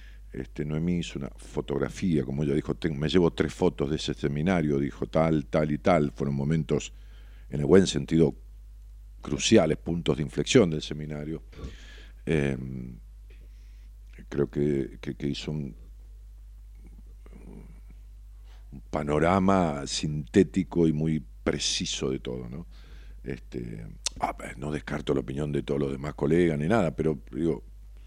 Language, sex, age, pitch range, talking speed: Spanish, male, 50-69, 65-90 Hz, 135 wpm